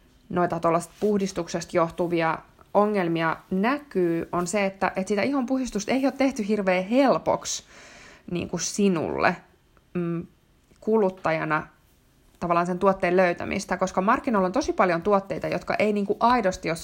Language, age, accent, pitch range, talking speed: Finnish, 20-39, native, 175-210 Hz, 140 wpm